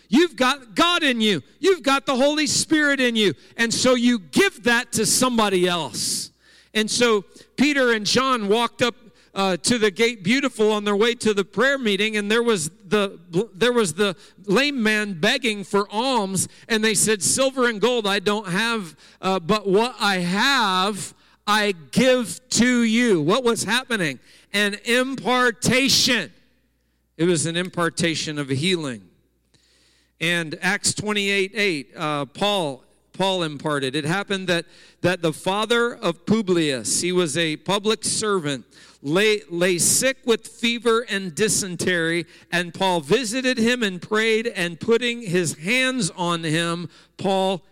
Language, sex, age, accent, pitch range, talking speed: English, male, 50-69, American, 175-235 Hz, 150 wpm